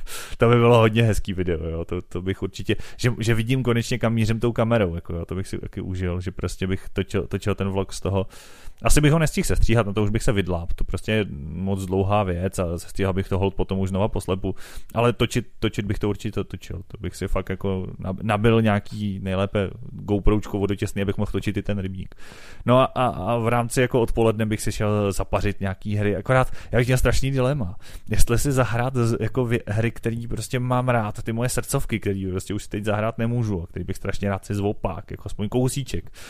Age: 30-49